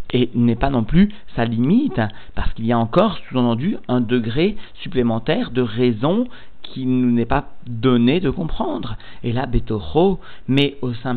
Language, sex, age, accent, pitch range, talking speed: French, male, 40-59, French, 115-145 Hz, 170 wpm